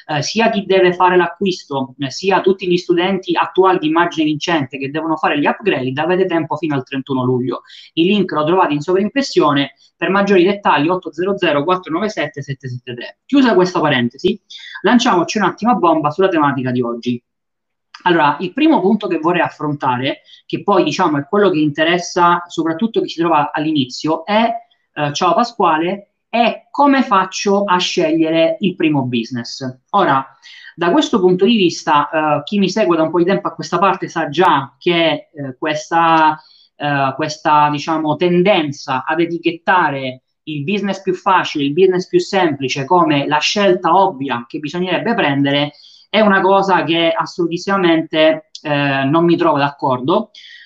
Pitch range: 150-190 Hz